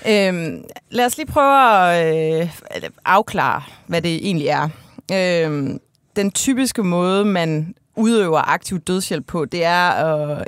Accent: native